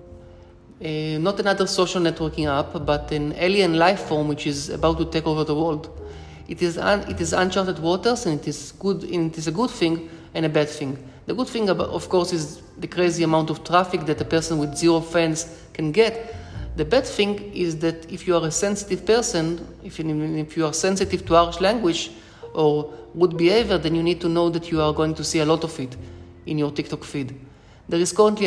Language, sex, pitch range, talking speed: English, male, 155-185 Hz, 220 wpm